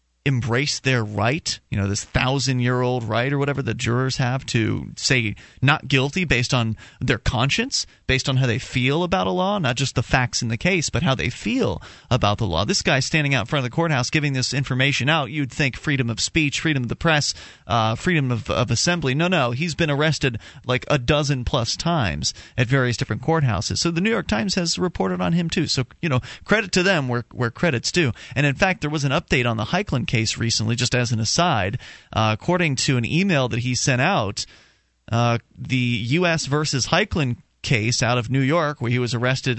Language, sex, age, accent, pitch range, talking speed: English, male, 30-49, American, 115-145 Hz, 215 wpm